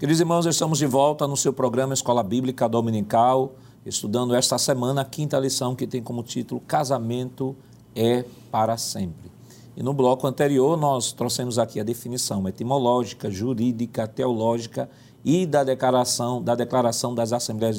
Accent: Brazilian